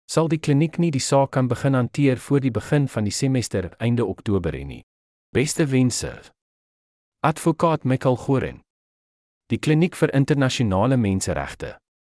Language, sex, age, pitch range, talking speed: English, male, 40-59, 100-145 Hz, 145 wpm